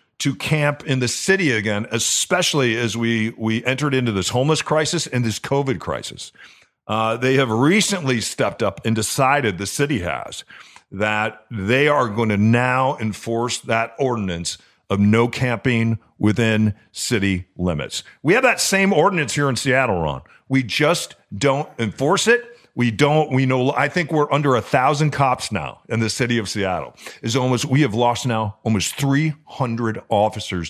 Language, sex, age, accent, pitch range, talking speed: English, male, 50-69, American, 110-150 Hz, 165 wpm